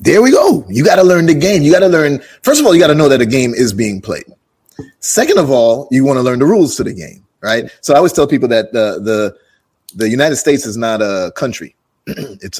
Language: English